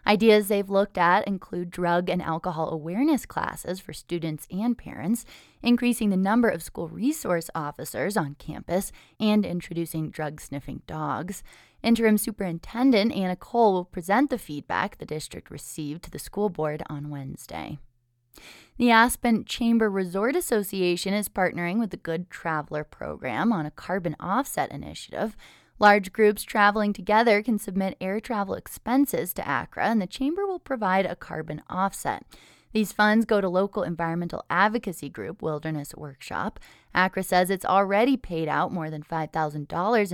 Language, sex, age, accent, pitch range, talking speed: English, female, 20-39, American, 160-215 Hz, 150 wpm